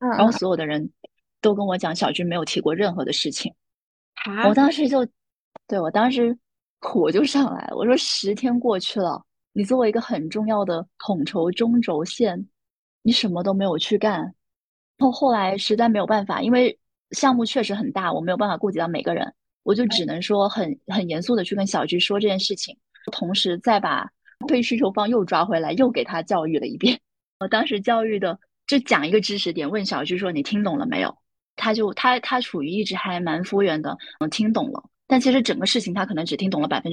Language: Chinese